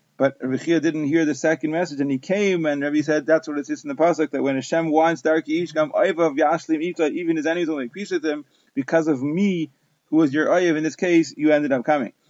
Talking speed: 230 wpm